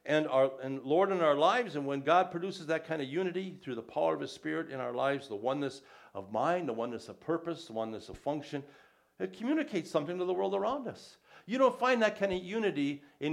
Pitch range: 125-175 Hz